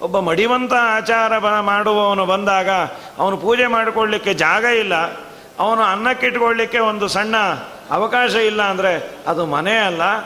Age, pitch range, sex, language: 40-59, 190-245 Hz, male, Kannada